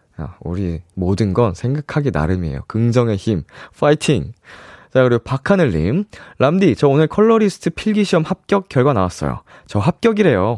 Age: 20-39